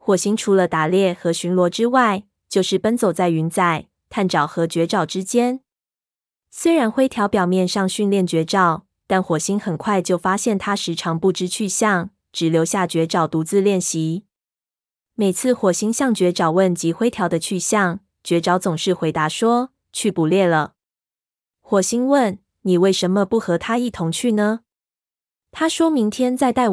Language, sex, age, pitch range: Chinese, female, 20-39, 175-220 Hz